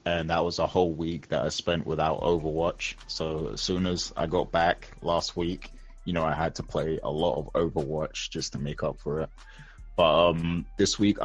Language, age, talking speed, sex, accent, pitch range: English, 20-39, 215 wpm, male, British, 75-85 Hz